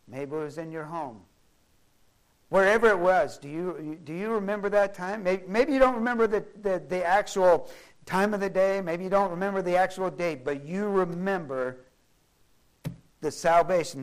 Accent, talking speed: American, 175 wpm